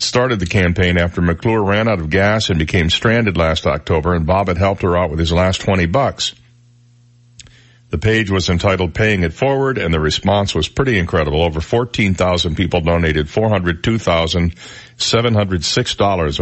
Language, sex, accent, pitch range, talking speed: English, male, American, 85-115 Hz, 155 wpm